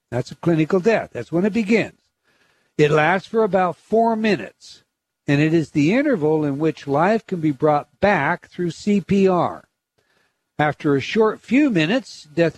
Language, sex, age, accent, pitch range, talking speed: English, male, 60-79, American, 135-185 Hz, 160 wpm